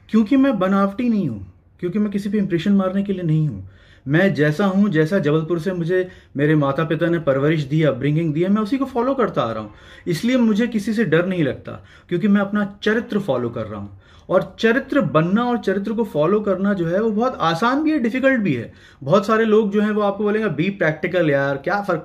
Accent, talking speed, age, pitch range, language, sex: native, 235 wpm, 30-49, 135-200 Hz, Hindi, male